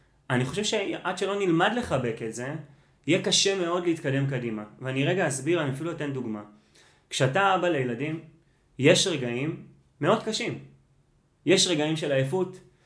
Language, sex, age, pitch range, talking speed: Hebrew, male, 30-49, 135-165 Hz, 145 wpm